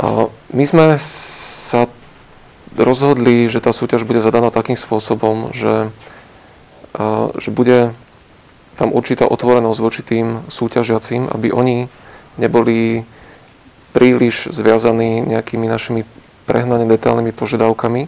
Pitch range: 110-120 Hz